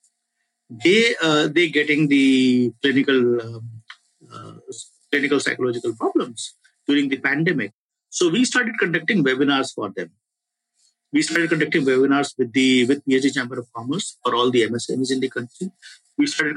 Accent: Indian